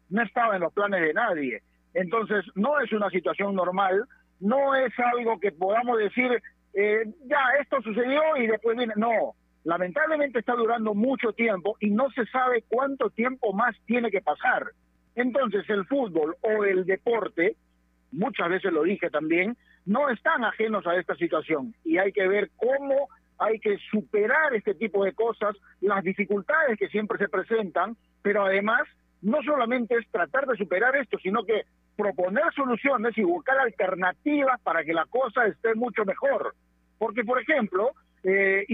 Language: Spanish